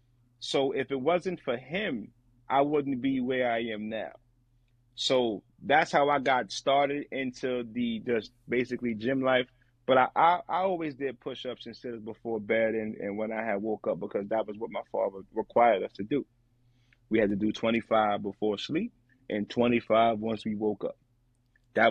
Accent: American